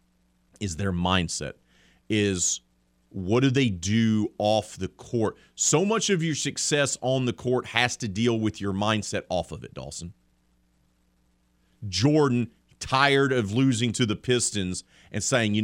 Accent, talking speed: American, 150 wpm